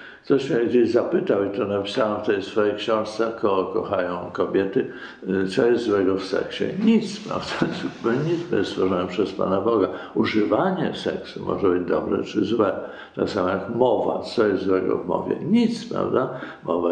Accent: native